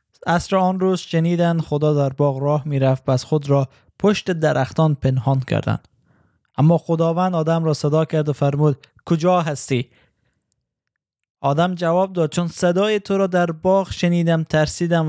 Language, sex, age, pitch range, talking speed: Persian, male, 20-39, 135-170 Hz, 145 wpm